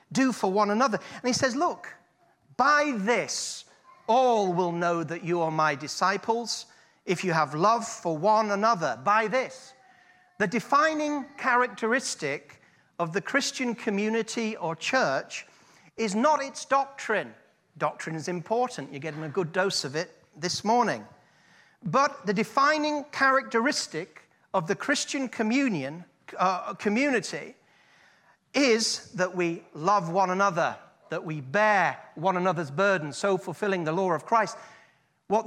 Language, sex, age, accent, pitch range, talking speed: English, male, 40-59, British, 180-245 Hz, 135 wpm